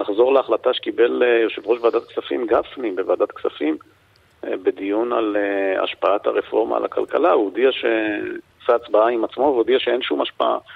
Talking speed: 150 wpm